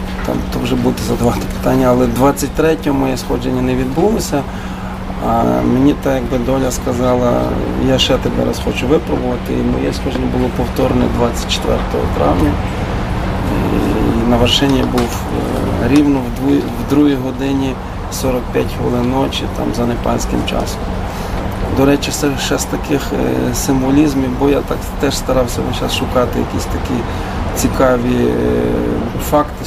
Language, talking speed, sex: Ukrainian, 125 wpm, male